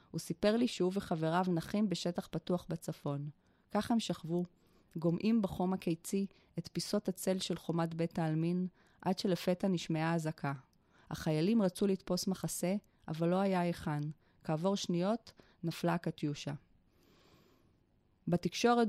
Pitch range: 165-190 Hz